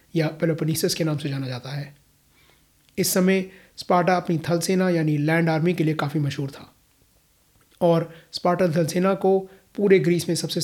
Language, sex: Hindi, male